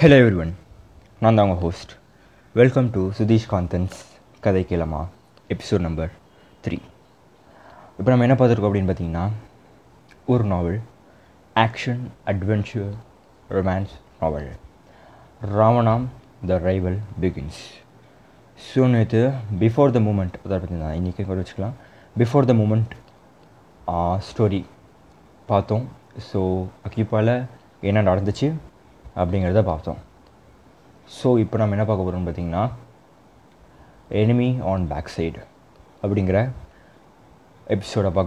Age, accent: 20-39, native